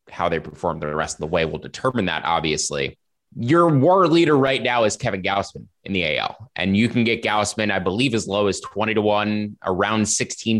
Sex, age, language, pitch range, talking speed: male, 20-39, English, 95-125 Hz, 215 wpm